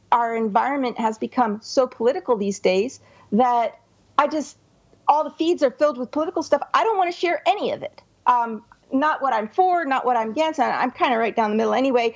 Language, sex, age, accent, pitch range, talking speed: English, female, 40-59, American, 235-295 Hz, 215 wpm